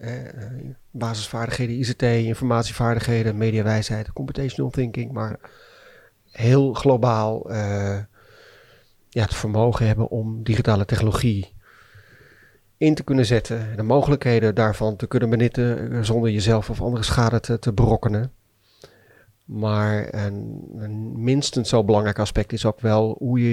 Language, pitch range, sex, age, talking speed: English, 110-125 Hz, male, 40-59, 120 wpm